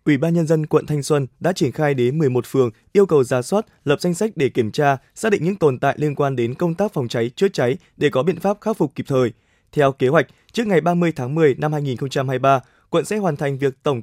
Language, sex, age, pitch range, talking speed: Vietnamese, male, 20-39, 135-170 Hz, 260 wpm